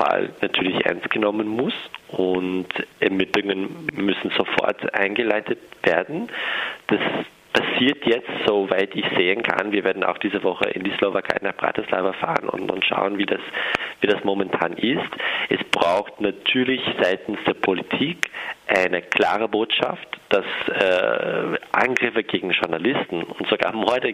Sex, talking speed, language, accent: male, 135 wpm, German, German